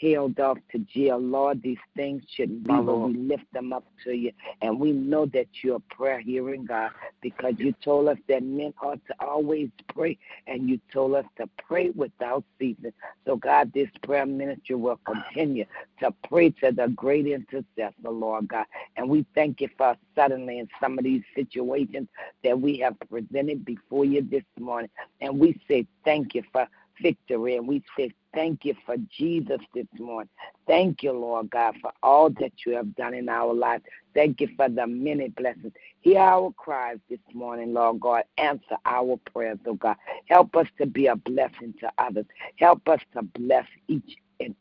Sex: female